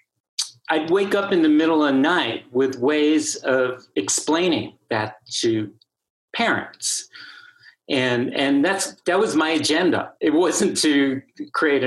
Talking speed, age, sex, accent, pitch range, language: 135 wpm, 50-69, male, American, 120-160 Hz, English